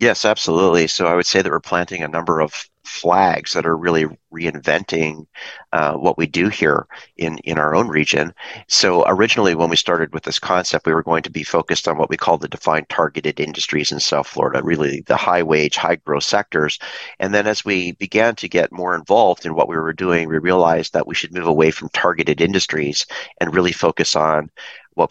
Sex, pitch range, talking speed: male, 80-85 Hz, 210 wpm